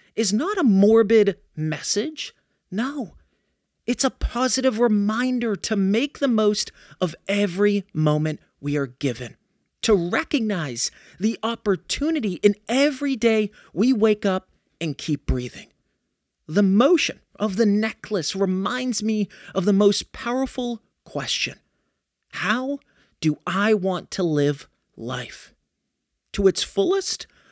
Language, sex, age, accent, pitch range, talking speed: English, male, 30-49, American, 180-240 Hz, 120 wpm